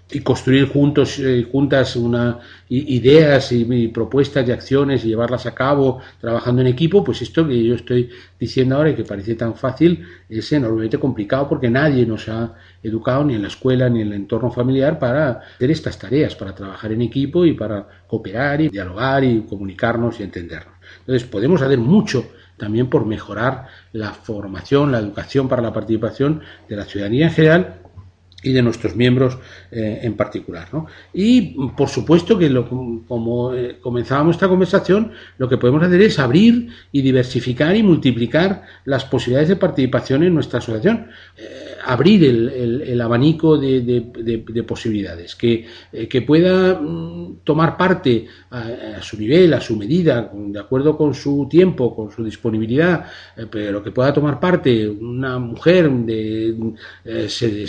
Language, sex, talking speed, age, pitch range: Spanish, male, 160 wpm, 40-59, 110-145 Hz